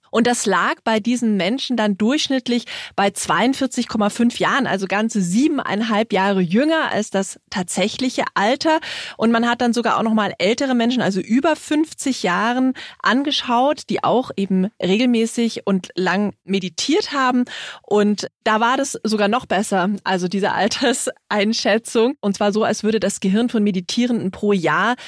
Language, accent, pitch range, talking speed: German, German, 195-255 Hz, 150 wpm